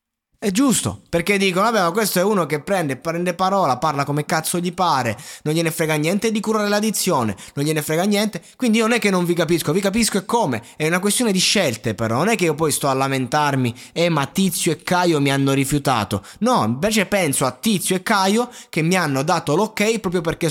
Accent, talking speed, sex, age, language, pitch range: native, 225 wpm, male, 20-39, Italian, 130-200 Hz